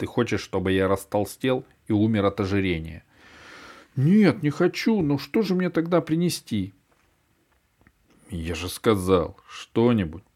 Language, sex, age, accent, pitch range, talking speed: Russian, male, 40-59, native, 95-125 Hz, 125 wpm